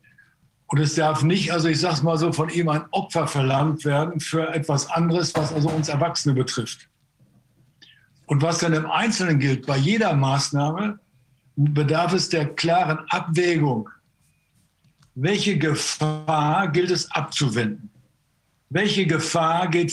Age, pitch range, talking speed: 60-79, 145-175 Hz, 135 wpm